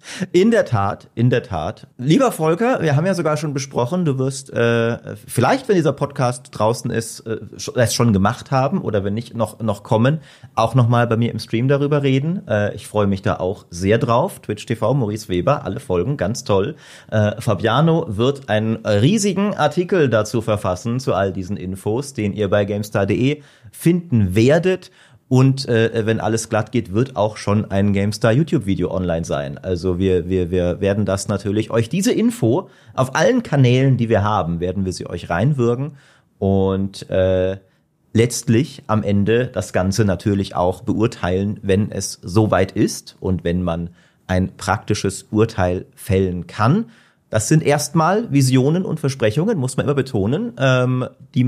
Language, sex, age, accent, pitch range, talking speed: German, male, 40-59, German, 100-135 Hz, 170 wpm